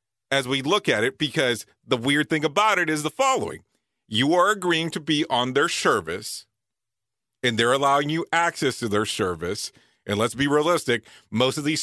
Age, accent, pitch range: 40-59, American, 120-165 Hz